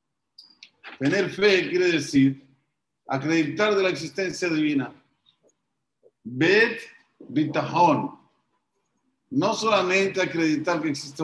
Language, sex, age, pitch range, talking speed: Spanish, male, 50-69, 150-200 Hz, 85 wpm